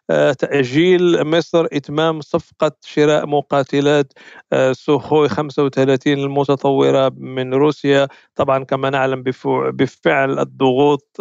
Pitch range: 140-170 Hz